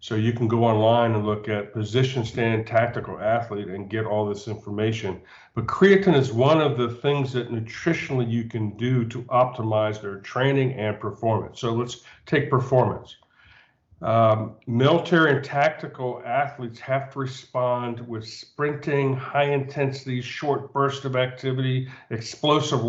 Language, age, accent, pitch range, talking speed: English, 50-69, American, 115-135 Hz, 145 wpm